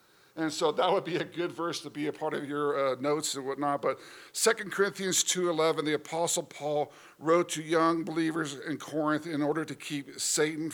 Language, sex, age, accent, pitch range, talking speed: English, male, 50-69, American, 140-165 Hz, 200 wpm